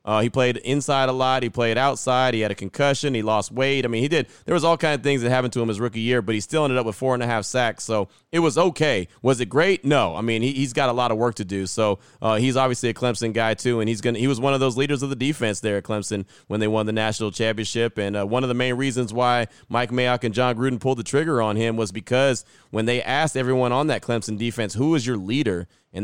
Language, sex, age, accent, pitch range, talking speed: English, male, 30-49, American, 110-135 Hz, 290 wpm